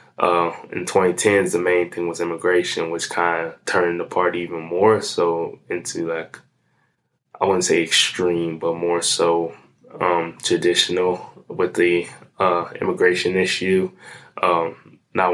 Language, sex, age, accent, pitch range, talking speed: English, male, 20-39, American, 85-90 Hz, 135 wpm